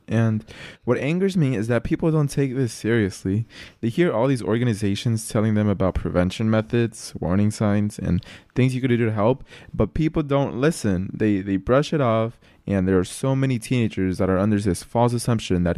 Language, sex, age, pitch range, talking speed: English, male, 20-39, 95-120 Hz, 200 wpm